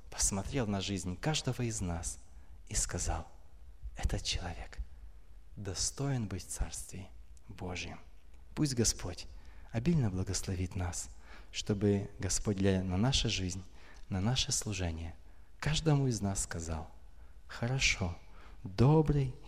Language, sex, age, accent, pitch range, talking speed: Russian, male, 30-49, native, 80-120 Hz, 110 wpm